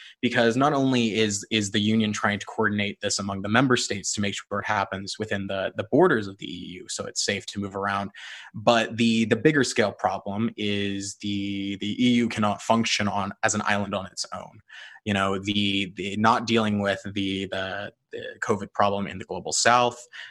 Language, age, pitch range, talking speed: English, 20-39, 100-120 Hz, 200 wpm